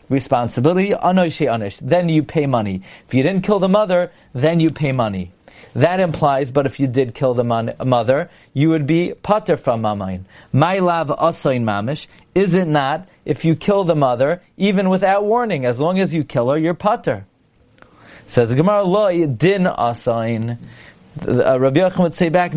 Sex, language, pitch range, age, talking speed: male, English, 135-180 Hz, 40-59, 170 wpm